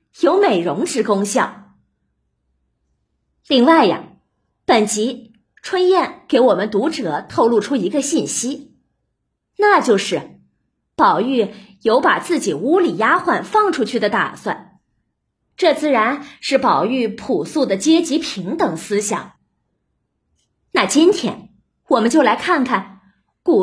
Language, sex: Chinese, female